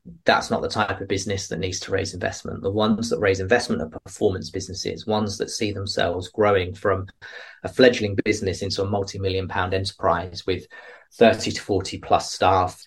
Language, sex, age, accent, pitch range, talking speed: English, male, 20-39, British, 95-105 Hz, 180 wpm